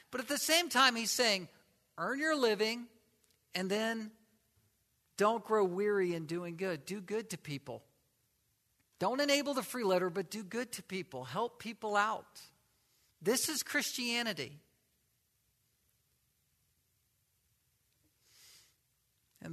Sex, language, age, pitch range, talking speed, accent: male, English, 50-69, 150-210 Hz, 120 wpm, American